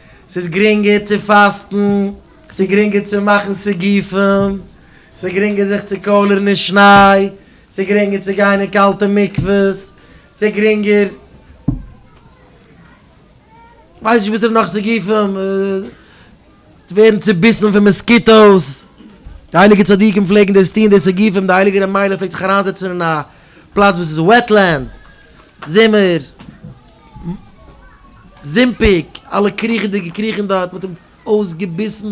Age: 30-49